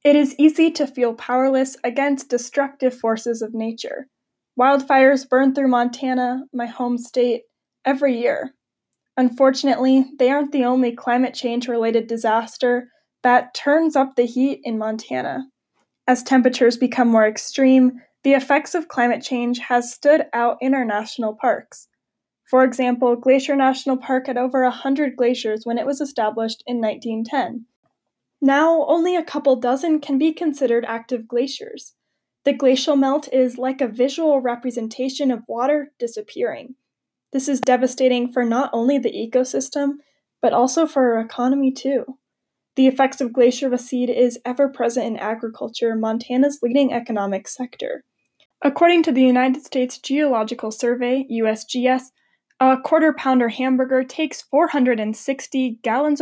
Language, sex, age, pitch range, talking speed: English, female, 10-29, 240-275 Hz, 140 wpm